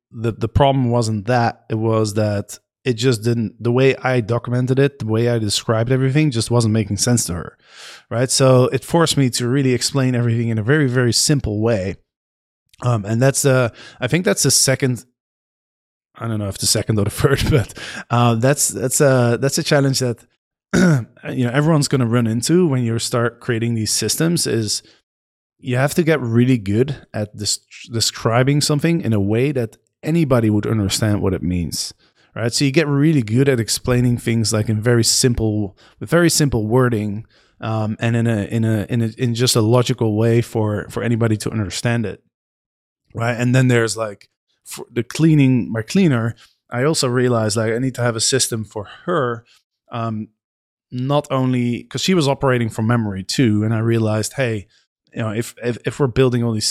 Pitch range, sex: 110-130 Hz, male